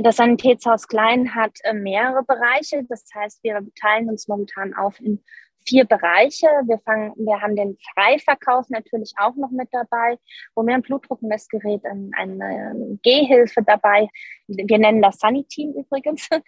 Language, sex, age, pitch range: German, female, 20-39, 220-285 Hz